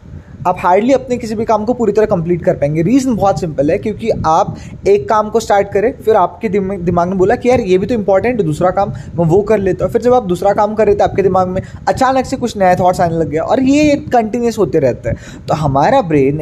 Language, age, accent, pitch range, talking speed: English, 20-39, Indian, 170-225 Hz, 240 wpm